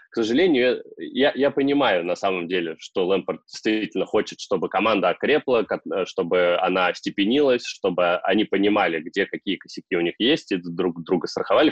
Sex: male